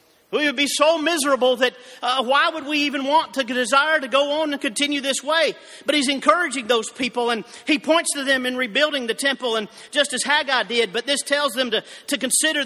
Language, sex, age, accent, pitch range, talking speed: English, male, 40-59, American, 225-280 Hz, 225 wpm